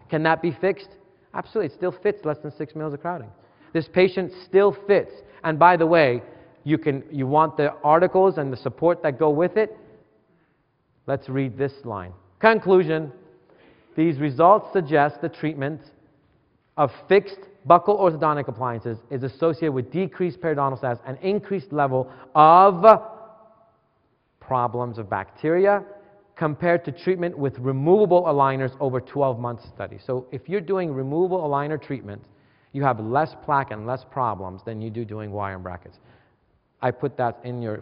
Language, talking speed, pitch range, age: English, 155 wpm, 120-175 Hz, 30-49